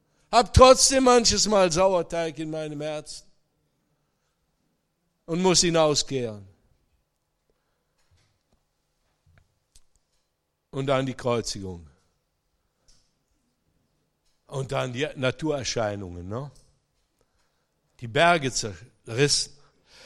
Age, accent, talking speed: 60-79, German, 70 wpm